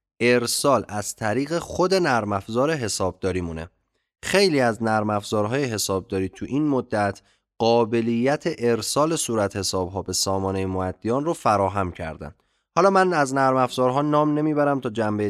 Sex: male